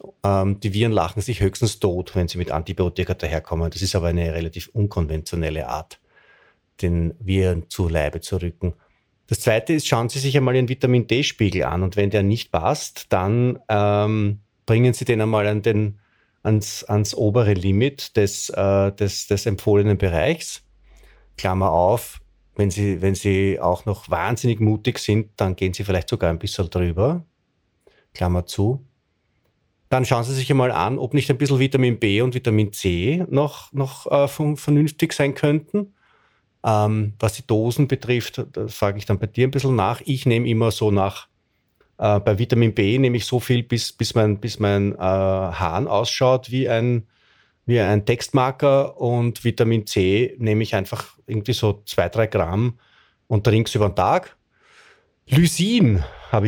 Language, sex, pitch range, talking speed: German, male, 95-125 Hz, 160 wpm